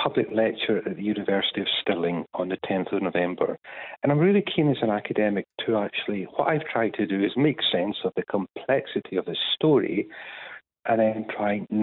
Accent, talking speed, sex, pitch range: British, 200 wpm, male, 100-135 Hz